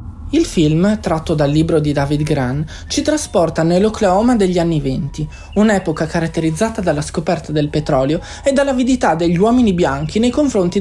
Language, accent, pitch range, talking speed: Italian, native, 160-225 Hz, 150 wpm